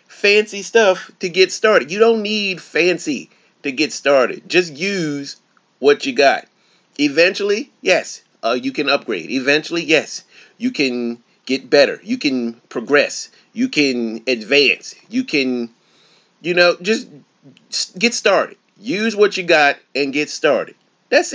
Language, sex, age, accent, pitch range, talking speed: English, male, 30-49, American, 135-215 Hz, 140 wpm